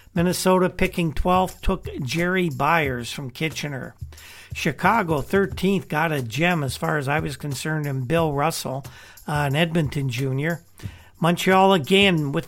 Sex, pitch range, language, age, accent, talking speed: male, 145-180 Hz, English, 50-69, American, 140 wpm